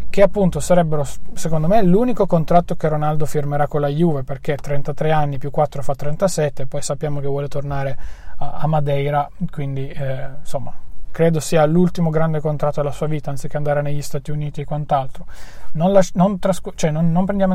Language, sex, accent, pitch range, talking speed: Italian, male, native, 145-175 Hz, 170 wpm